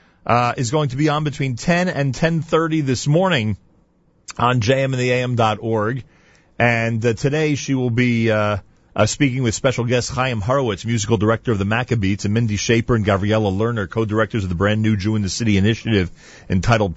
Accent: American